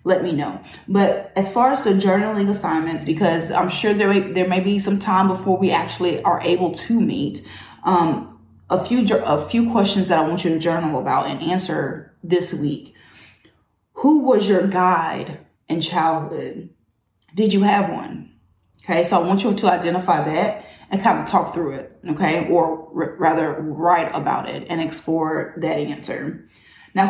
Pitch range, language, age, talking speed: 165-205 Hz, English, 20-39, 175 wpm